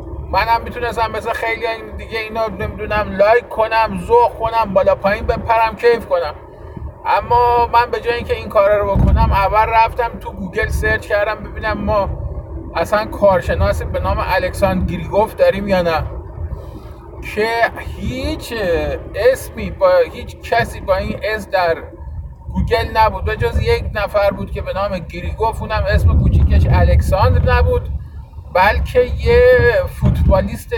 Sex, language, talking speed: male, Persian, 140 wpm